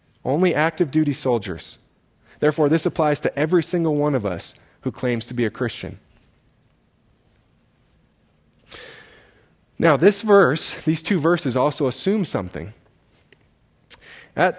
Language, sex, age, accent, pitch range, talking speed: English, male, 30-49, American, 130-180 Hz, 115 wpm